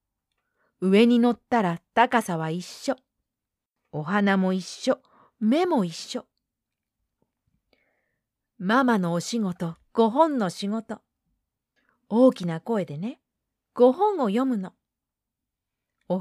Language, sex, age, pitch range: Japanese, female, 40-59, 185-255 Hz